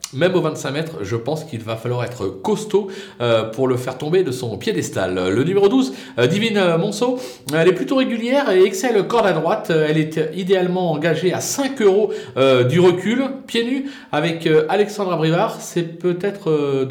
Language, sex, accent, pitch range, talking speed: French, male, French, 135-190 Hz, 185 wpm